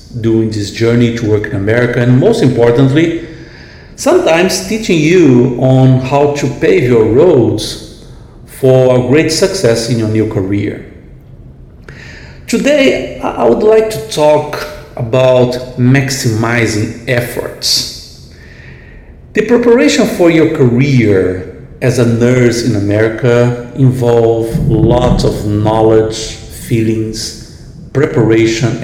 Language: Portuguese